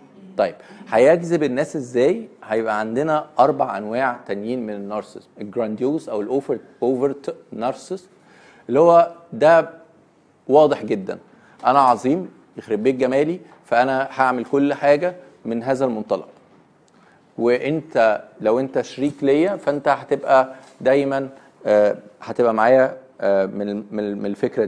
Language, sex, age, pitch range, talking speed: Arabic, male, 40-59, 115-150 Hz, 110 wpm